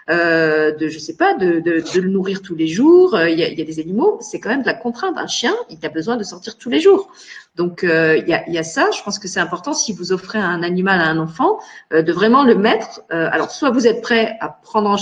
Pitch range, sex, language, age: 175-230 Hz, female, French, 40-59